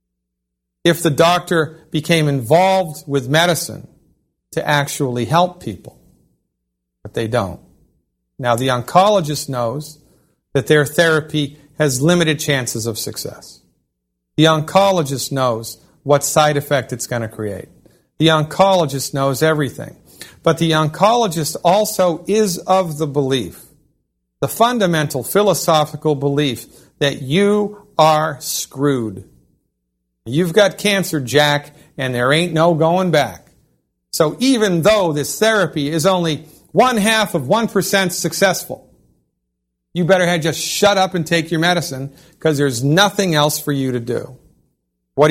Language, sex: English, male